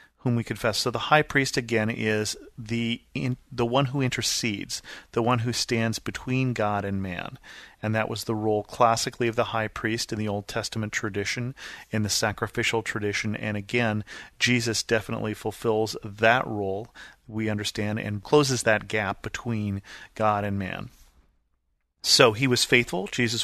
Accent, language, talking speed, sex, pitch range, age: American, English, 160 wpm, male, 105-120 Hz, 40-59